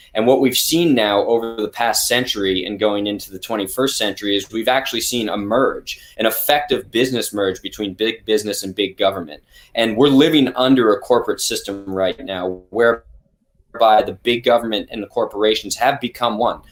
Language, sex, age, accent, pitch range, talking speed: English, male, 20-39, American, 105-135 Hz, 180 wpm